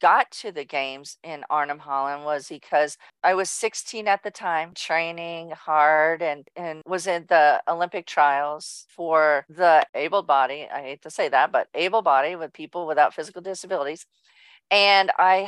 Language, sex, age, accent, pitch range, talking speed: English, female, 40-59, American, 150-185 Hz, 165 wpm